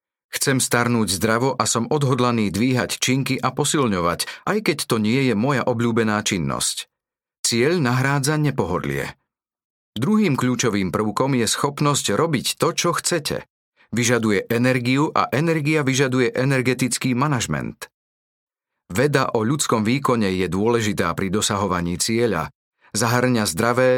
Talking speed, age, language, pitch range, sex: 120 wpm, 40-59, Slovak, 115-145 Hz, male